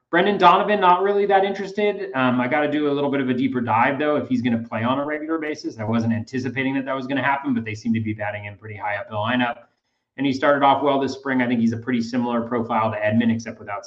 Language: English